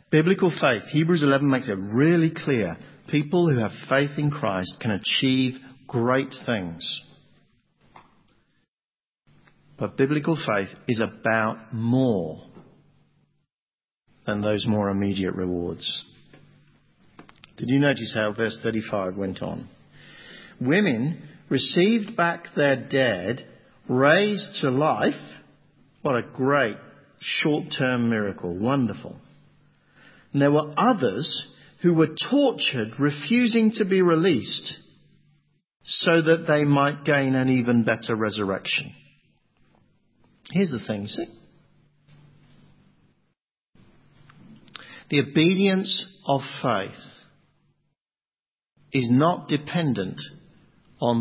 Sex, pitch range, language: male, 115-160 Hz, English